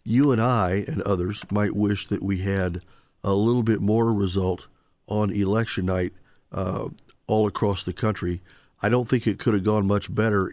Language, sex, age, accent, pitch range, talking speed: English, male, 50-69, American, 95-120 Hz, 180 wpm